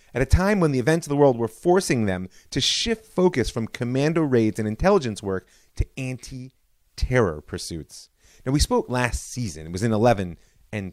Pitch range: 95-140 Hz